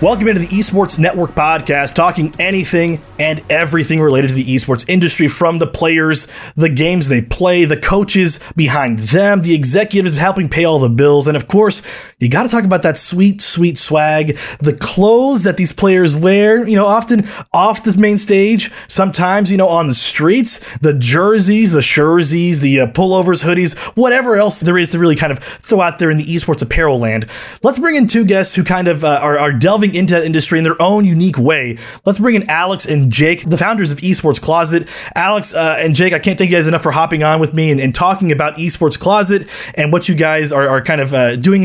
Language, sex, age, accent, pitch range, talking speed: English, male, 20-39, American, 150-190 Hz, 215 wpm